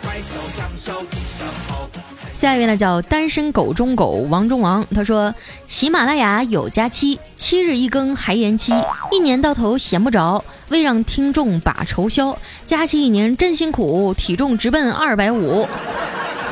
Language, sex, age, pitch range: Chinese, female, 10-29, 210-300 Hz